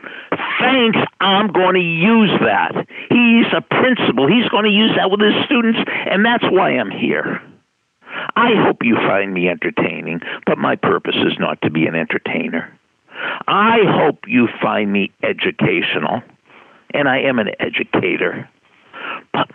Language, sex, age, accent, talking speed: English, male, 60-79, American, 150 wpm